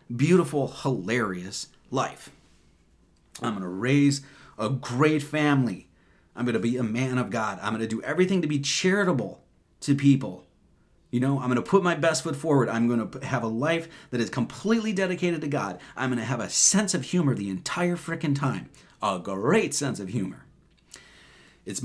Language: English